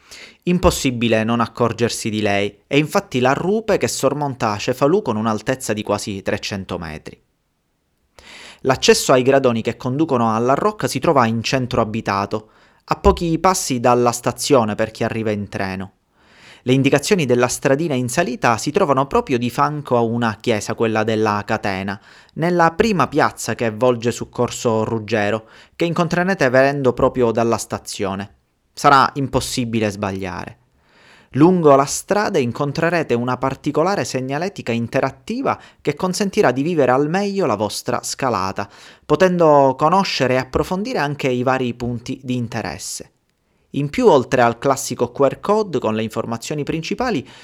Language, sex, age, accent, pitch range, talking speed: Italian, male, 30-49, native, 115-150 Hz, 140 wpm